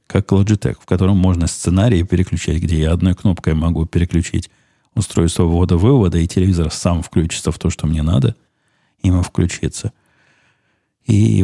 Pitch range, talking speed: 85-110 Hz, 150 wpm